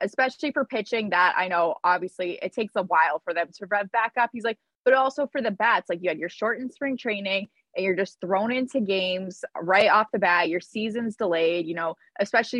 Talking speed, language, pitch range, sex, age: 225 wpm, English, 175-230 Hz, female, 20-39